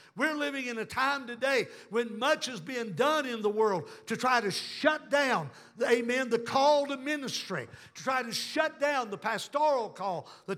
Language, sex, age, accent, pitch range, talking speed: English, male, 60-79, American, 210-280 Hz, 185 wpm